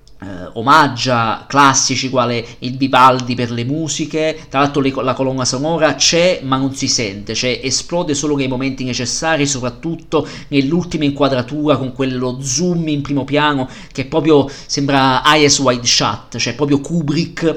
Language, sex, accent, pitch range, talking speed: Italian, male, native, 135-160 Hz, 145 wpm